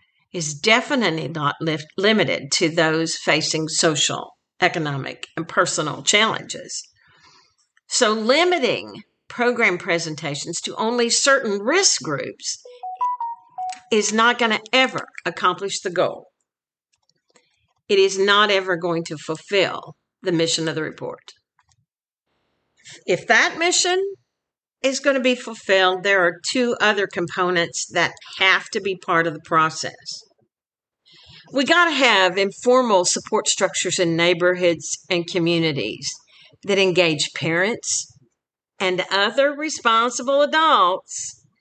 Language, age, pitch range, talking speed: English, 50-69, 170-265 Hz, 115 wpm